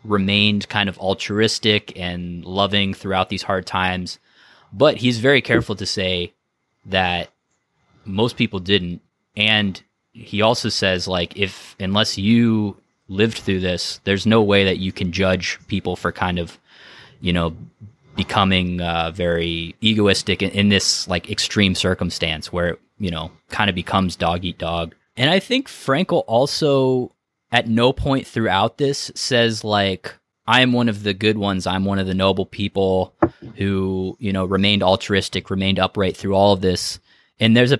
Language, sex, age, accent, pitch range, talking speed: English, male, 20-39, American, 95-110 Hz, 165 wpm